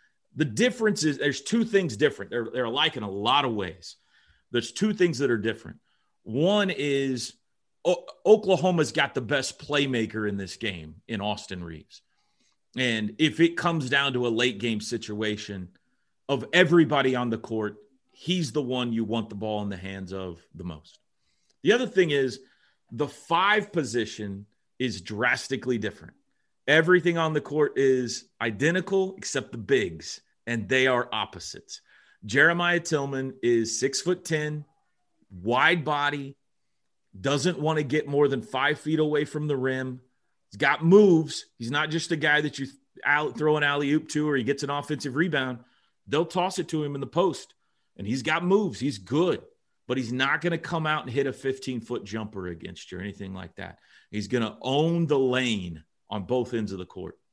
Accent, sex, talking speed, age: American, male, 180 wpm, 30-49